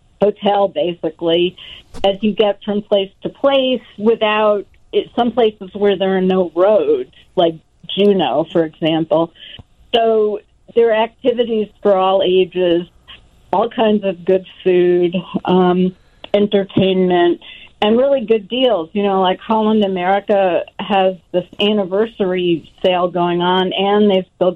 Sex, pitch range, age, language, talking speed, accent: female, 185-215 Hz, 50-69, English, 130 wpm, American